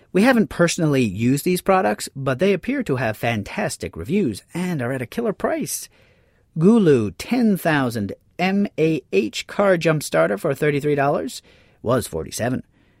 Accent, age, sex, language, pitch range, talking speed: American, 40-59, male, English, 125-185 Hz, 135 wpm